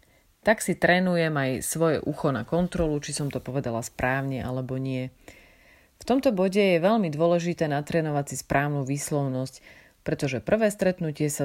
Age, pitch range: 30-49, 130-170 Hz